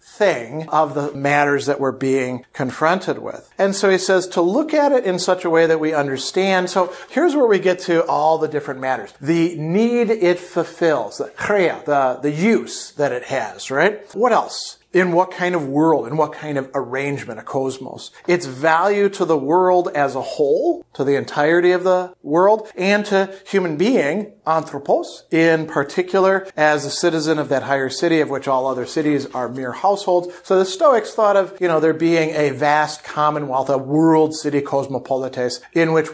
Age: 40-59